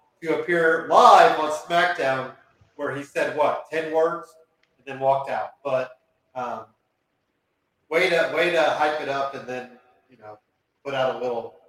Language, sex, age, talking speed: English, male, 40-59, 165 wpm